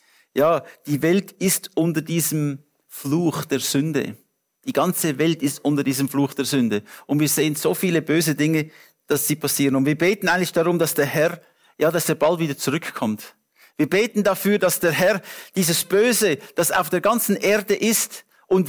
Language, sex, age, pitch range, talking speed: English, male, 50-69, 155-205 Hz, 185 wpm